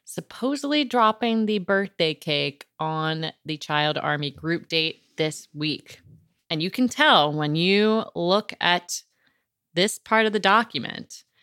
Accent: American